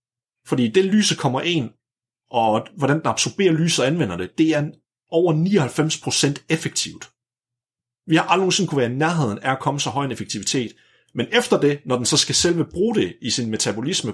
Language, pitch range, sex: Danish, 120-160 Hz, male